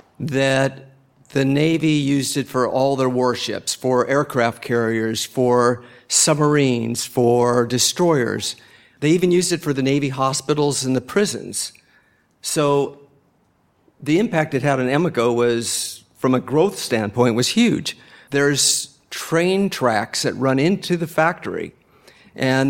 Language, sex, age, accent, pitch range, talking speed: English, male, 50-69, American, 125-150 Hz, 130 wpm